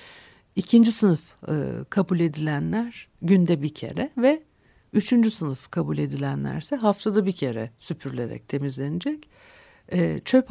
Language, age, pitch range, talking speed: Turkish, 60-79, 150-195 Hz, 115 wpm